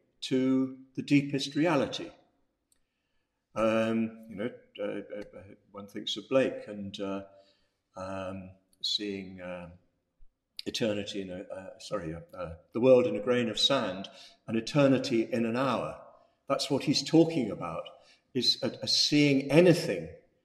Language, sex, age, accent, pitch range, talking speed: English, male, 50-69, British, 105-135 Hz, 130 wpm